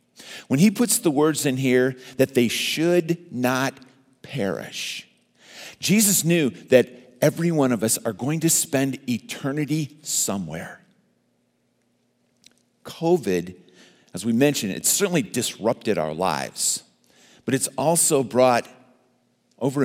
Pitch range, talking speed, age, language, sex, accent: 125-155 Hz, 120 wpm, 50-69, English, male, American